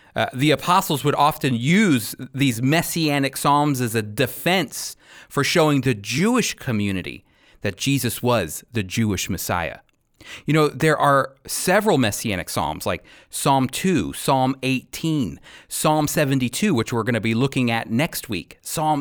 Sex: male